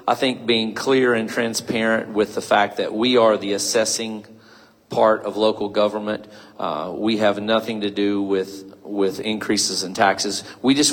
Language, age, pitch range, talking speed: English, 40-59, 105-115 Hz, 170 wpm